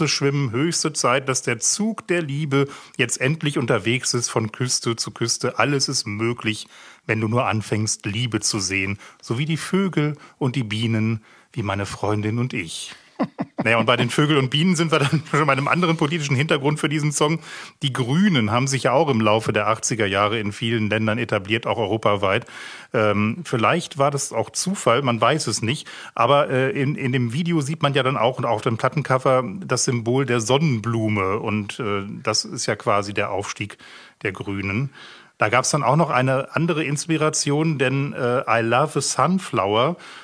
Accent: German